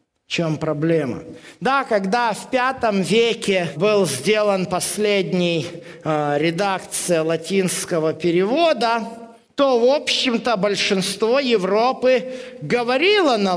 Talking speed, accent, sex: 95 wpm, native, male